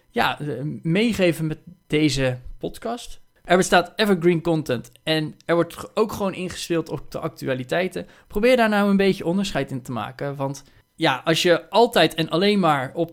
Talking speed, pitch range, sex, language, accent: 165 wpm, 140-170 Hz, male, Dutch, Dutch